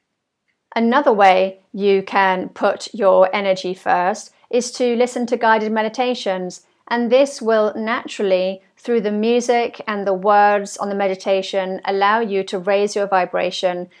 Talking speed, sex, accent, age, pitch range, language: 140 wpm, female, British, 40-59, 185-210 Hz, English